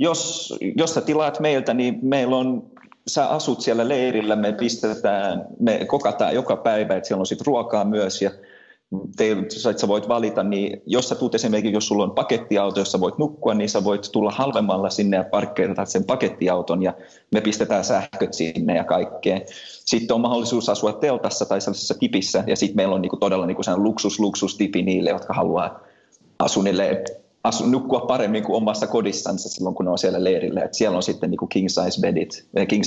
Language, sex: Finnish, male